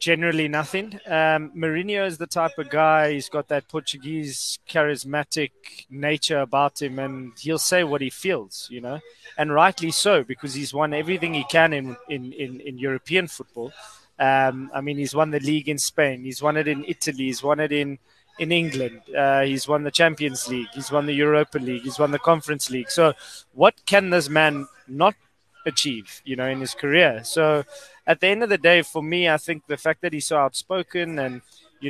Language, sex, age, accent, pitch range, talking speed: English, male, 20-39, South African, 140-165 Hz, 200 wpm